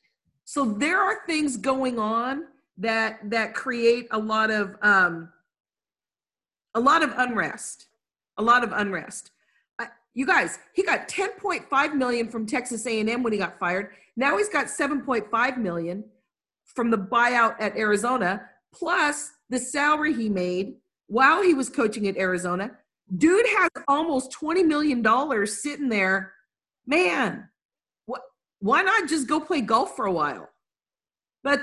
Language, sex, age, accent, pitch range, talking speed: English, female, 50-69, American, 220-295 Hz, 140 wpm